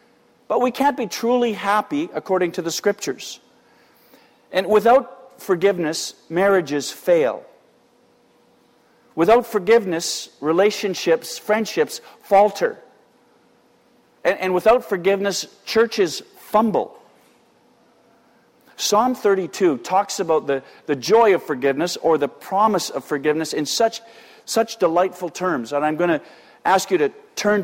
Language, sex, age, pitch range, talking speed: English, male, 50-69, 150-205 Hz, 115 wpm